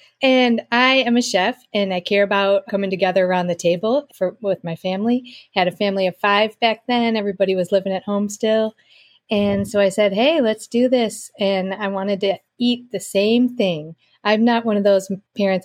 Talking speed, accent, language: 205 wpm, American, English